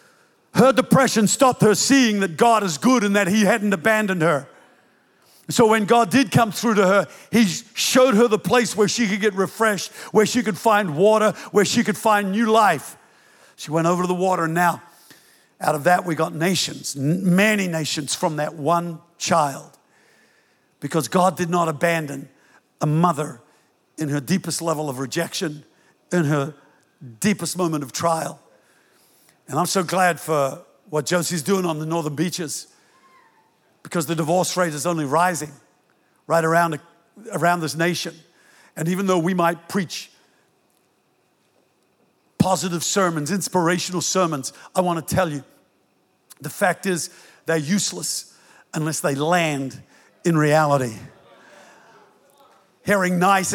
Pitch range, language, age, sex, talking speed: 160-205 Hz, English, 60-79, male, 150 wpm